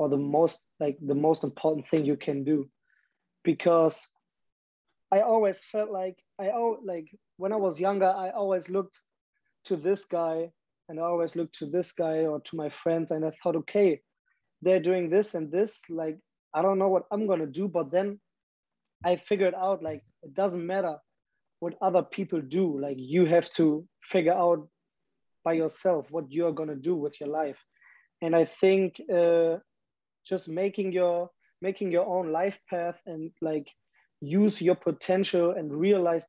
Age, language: 20-39, English